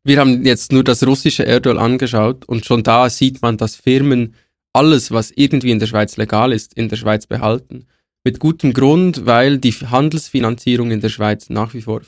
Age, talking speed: 20-39, 195 wpm